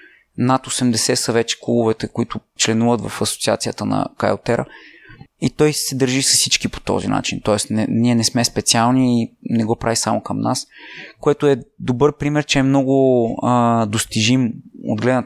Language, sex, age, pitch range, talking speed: Bulgarian, male, 20-39, 115-135 Hz, 170 wpm